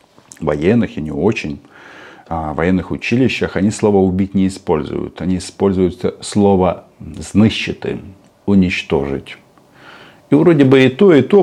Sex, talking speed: male, 125 wpm